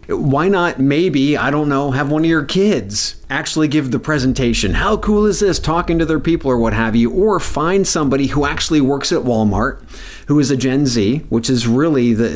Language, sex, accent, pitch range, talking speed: English, male, American, 120-155 Hz, 215 wpm